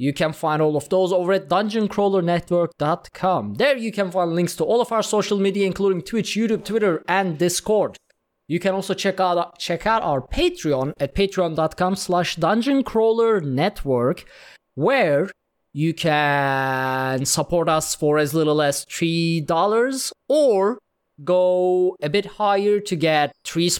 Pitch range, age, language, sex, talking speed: 150-200 Hz, 20-39, English, male, 140 wpm